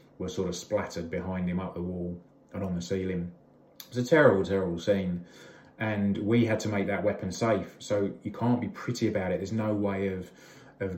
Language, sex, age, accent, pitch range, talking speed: English, male, 20-39, British, 90-105 Hz, 210 wpm